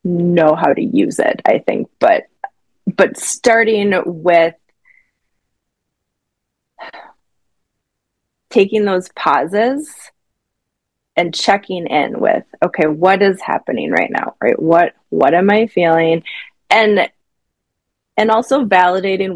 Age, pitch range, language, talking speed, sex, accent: 20-39, 170-230 Hz, English, 105 wpm, female, American